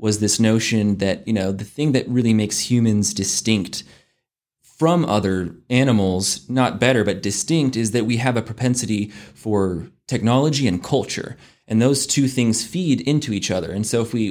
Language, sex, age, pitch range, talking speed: English, male, 20-39, 105-130 Hz, 175 wpm